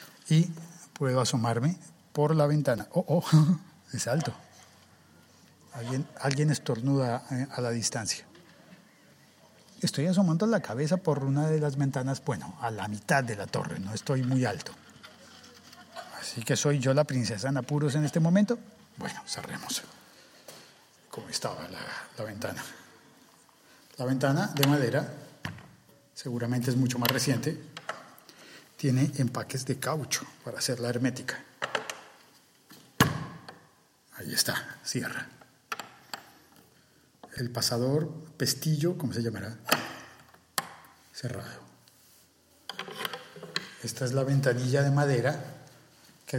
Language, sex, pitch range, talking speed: Spanish, male, 120-150 Hz, 115 wpm